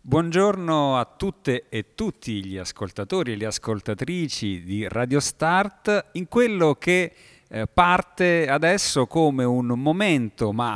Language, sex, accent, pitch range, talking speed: Italian, male, native, 105-155 Hz, 125 wpm